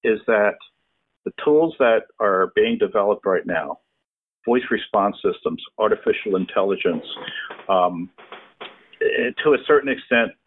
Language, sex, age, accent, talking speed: English, male, 50-69, American, 115 wpm